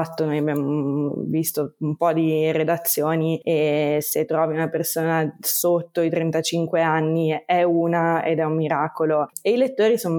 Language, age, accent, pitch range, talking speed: Italian, 20-39, native, 160-180 Hz, 155 wpm